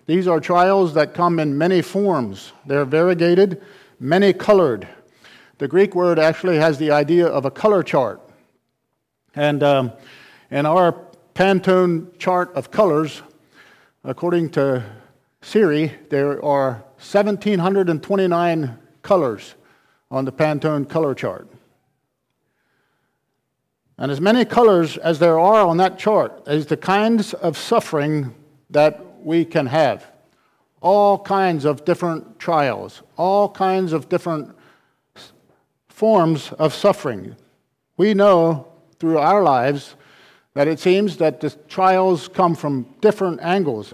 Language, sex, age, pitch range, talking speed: English, male, 50-69, 145-185 Hz, 120 wpm